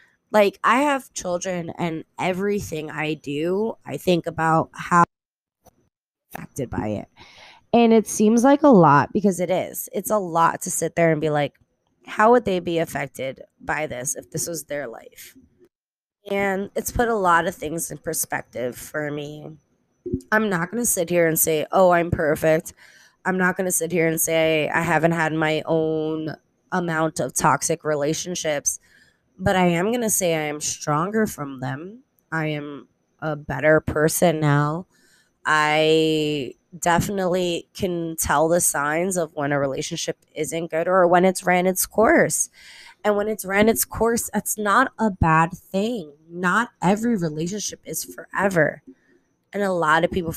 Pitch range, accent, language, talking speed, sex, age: 155-195 Hz, American, English, 165 wpm, female, 20-39